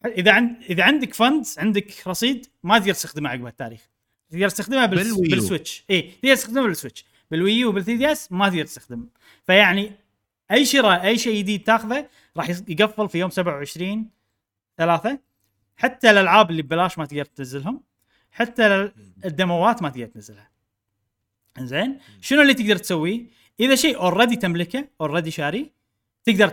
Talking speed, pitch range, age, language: 140 wpm, 130-205 Hz, 30-49, Arabic